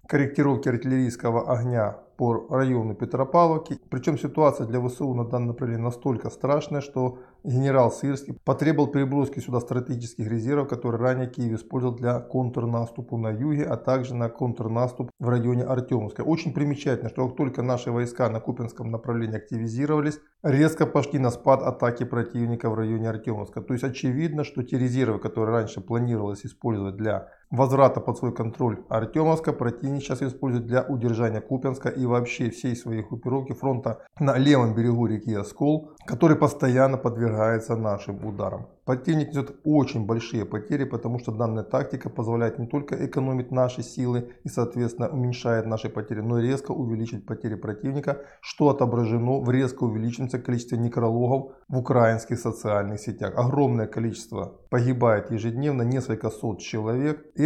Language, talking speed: Russian, 145 wpm